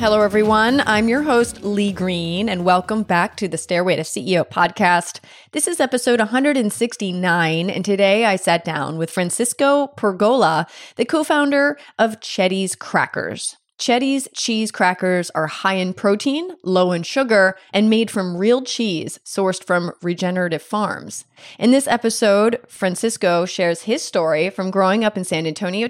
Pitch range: 180-235 Hz